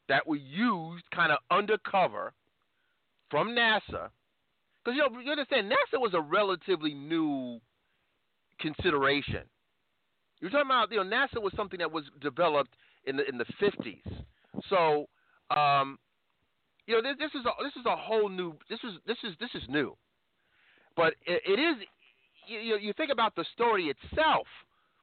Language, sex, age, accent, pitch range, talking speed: English, male, 40-59, American, 140-230 Hz, 160 wpm